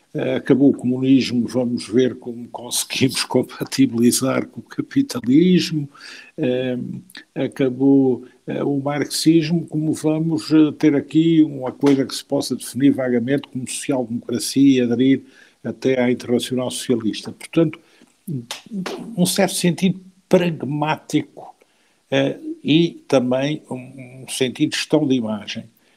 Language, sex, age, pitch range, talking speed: Portuguese, male, 60-79, 120-160 Hz, 105 wpm